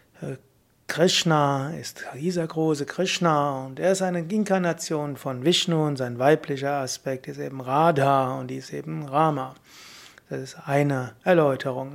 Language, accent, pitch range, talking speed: German, German, 140-170 Hz, 140 wpm